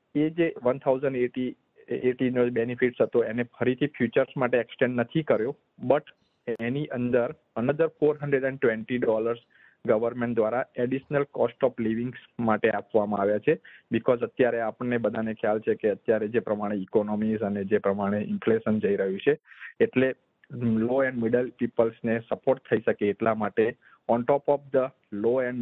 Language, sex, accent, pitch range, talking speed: Gujarati, male, native, 110-135 Hz, 155 wpm